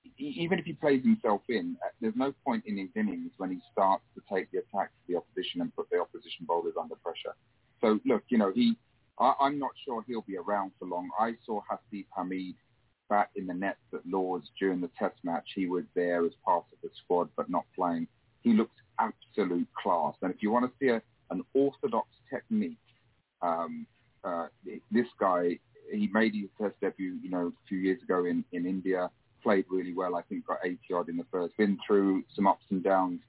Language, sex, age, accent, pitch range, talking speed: English, male, 40-59, British, 95-140 Hz, 210 wpm